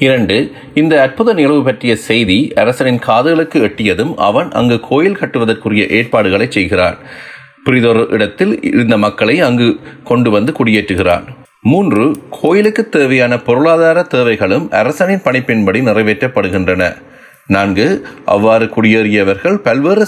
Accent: native